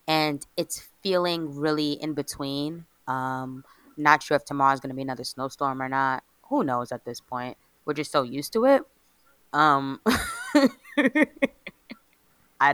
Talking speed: 150 wpm